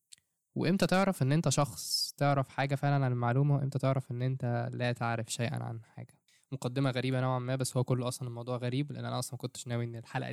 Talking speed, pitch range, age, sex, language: 210 wpm, 125-145 Hz, 10-29, male, Arabic